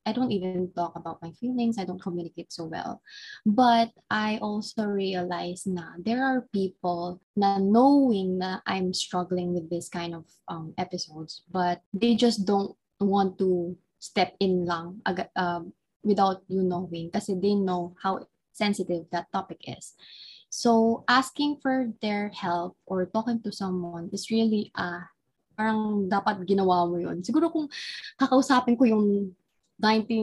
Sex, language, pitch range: female, Filipino, 180-235 Hz